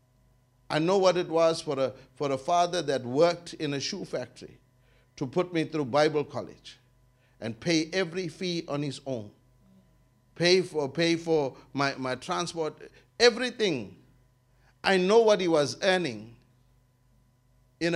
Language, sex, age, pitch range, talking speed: English, male, 60-79, 125-165 Hz, 145 wpm